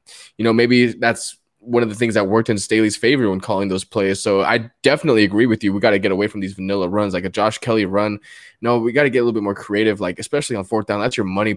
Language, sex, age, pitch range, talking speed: English, male, 20-39, 100-115 Hz, 285 wpm